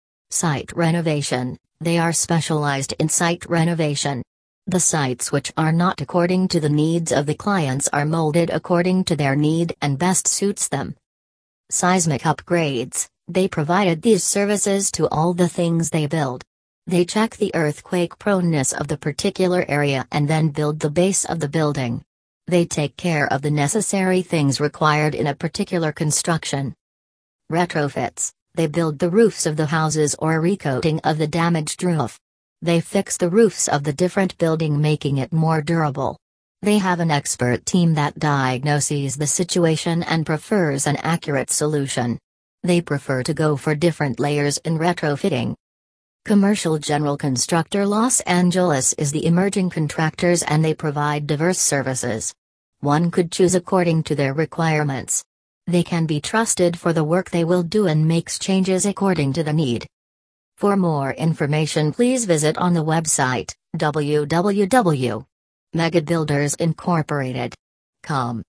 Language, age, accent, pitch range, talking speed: English, 40-59, American, 145-175 Hz, 145 wpm